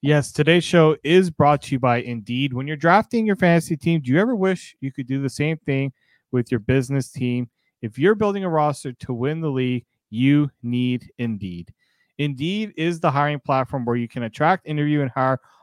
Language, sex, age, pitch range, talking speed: English, male, 30-49, 125-165 Hz, 205 wpm